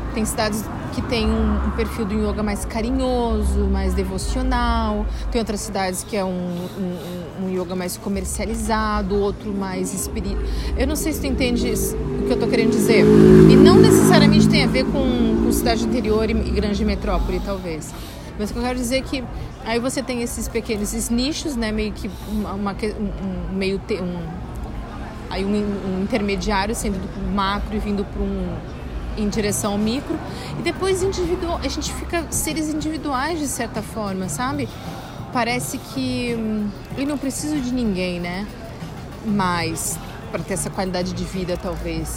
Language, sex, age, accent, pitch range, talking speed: Portuguese, female, 30-49, Brazilian, 180-225 Hz, 175 wpm